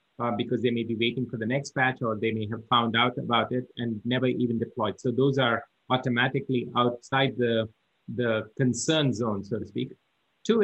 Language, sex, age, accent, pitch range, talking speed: English, male, 30-49, Indian, 120-140 Hz, 195 wpm